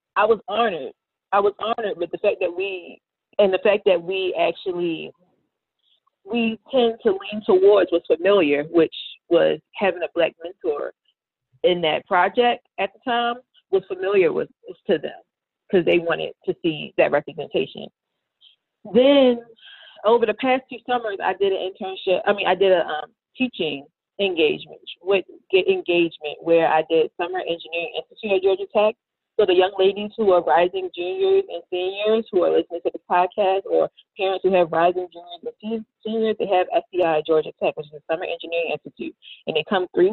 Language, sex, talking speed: English, female, 175 wpm